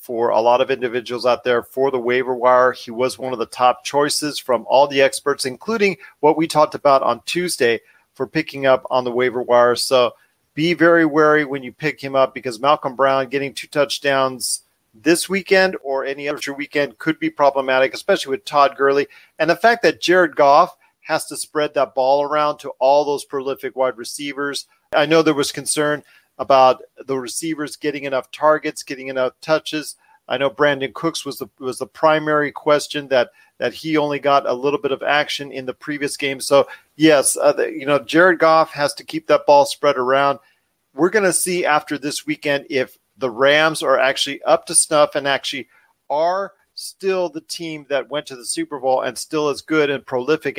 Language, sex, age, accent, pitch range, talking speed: English, male, 40-59, American, 130-155 Hz, 200 wpm